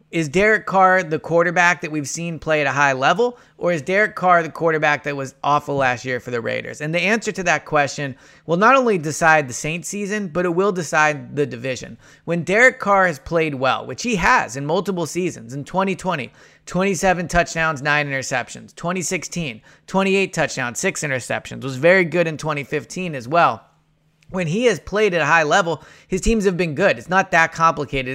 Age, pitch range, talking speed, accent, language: 20-39, 140-180 Hz, 200 wpm, American, English